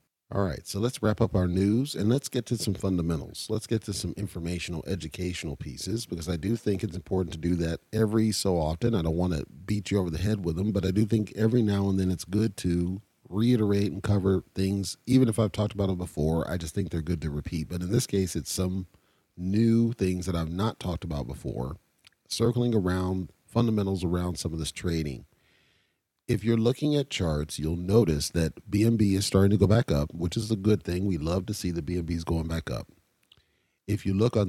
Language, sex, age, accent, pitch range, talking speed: English, male, 40-59, American, 85-105 Hz, 225 wpm